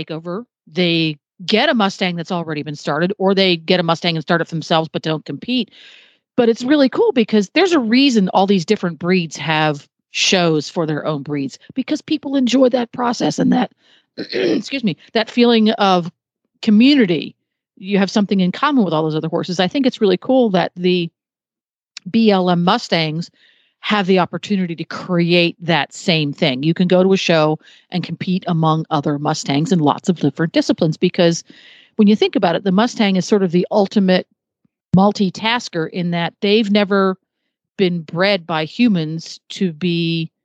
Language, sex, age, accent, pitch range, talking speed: English, female, 40-59, American, 165-210 Hz, 180 wpm